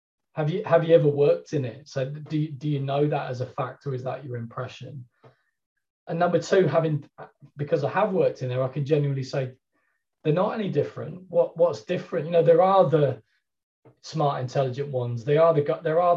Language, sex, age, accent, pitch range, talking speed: English, male, 20-39, British, 130-165 Hz, 210 wpm